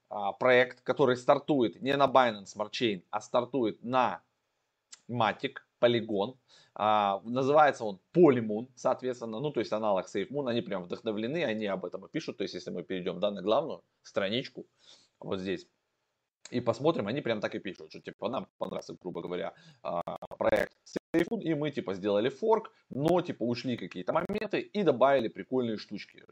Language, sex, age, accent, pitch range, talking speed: Russian, male, 20-39, native, 105-135 Hz, 155 wpm